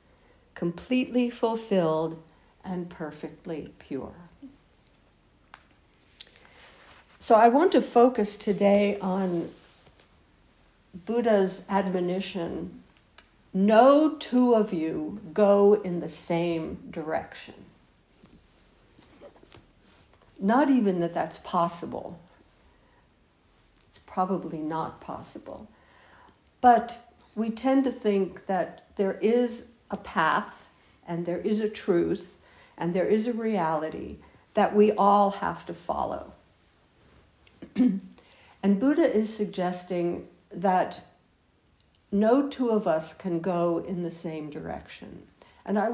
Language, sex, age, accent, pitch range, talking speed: English, female, 60-79, American, 170-225 Hz, 100 wpm